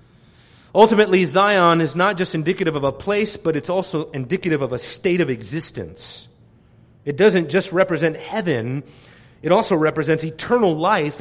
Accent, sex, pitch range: American, male, 130-175 Hz